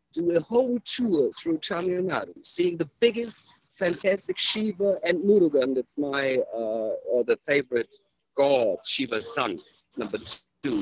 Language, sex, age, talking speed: English, male, 50-69, 135 wpm